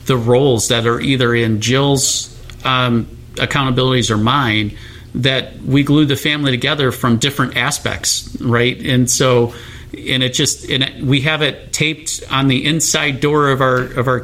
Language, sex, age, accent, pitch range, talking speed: English, male, 40-59, American, 115-135 Hz, 165 wpm